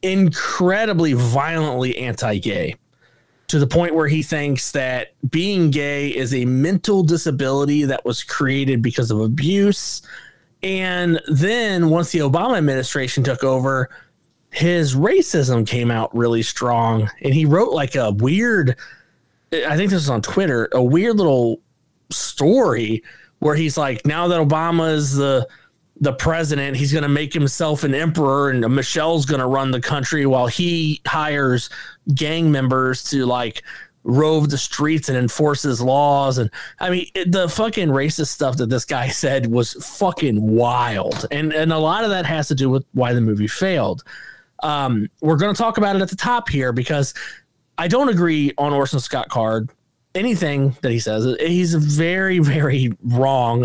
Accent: American